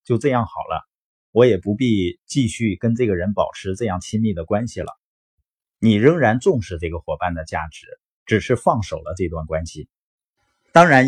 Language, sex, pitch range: Chinese, male, 95-135 Hz